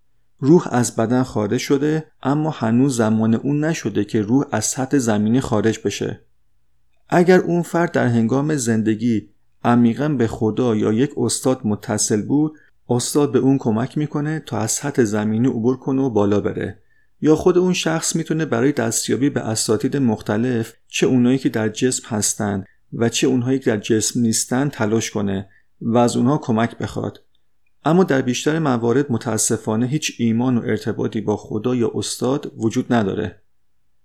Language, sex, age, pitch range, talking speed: Persian, male, 40-59, 110-135 Hz, 160 wpm